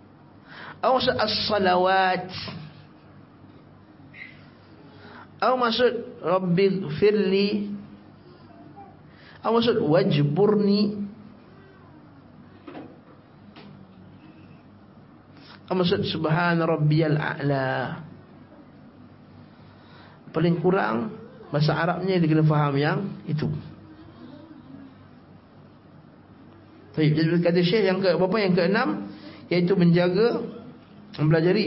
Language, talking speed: Malay, 65 wpm